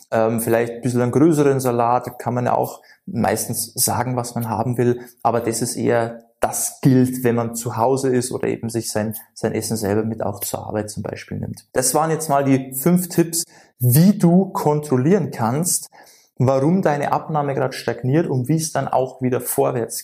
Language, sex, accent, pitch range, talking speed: German, male, German, 120-155 Hz, 190 wpm